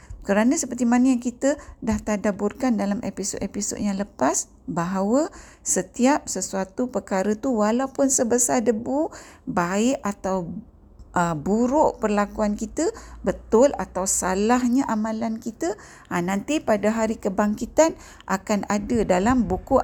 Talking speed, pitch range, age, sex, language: 120 wpm, 180-230 Hz, 50-69, female, Malay